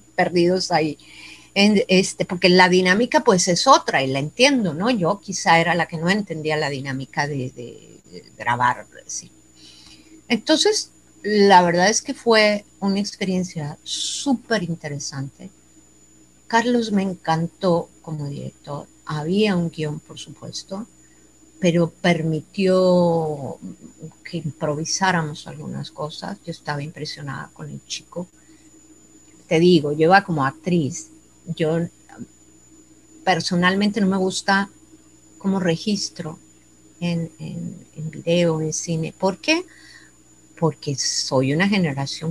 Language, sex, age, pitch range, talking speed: Spanish, female, 50-69, 155-210 Hz, 120 wpm